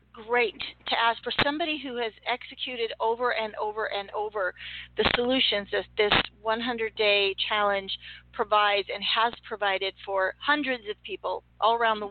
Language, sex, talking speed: English, female, 150 wpm